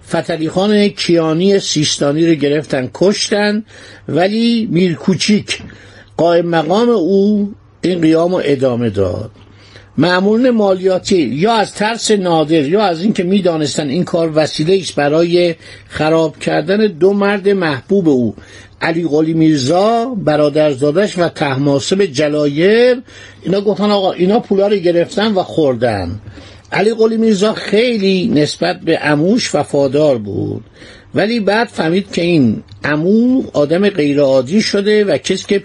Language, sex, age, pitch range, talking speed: Persian, male, 60-79, 145-205 Hz, 120 wpm